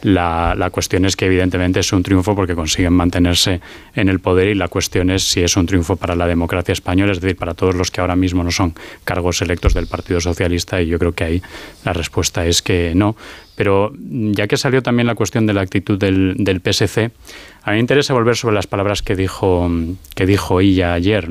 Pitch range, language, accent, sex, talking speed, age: 90-105 Hz, Spanish, Spanish, male, 220 wpm, 20-39